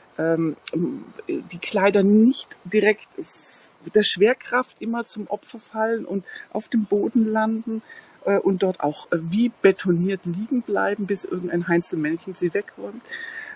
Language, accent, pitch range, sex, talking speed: German, German, 190-230 Hz, female, 125 wpm